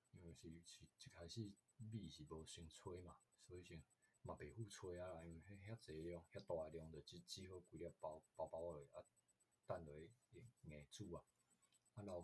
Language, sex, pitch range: Chinese, male, 80-110 Hz